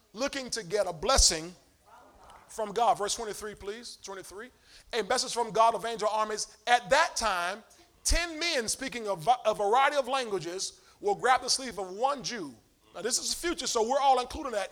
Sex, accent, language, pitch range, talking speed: male, American, English, 215-310 Hz, 185 wpm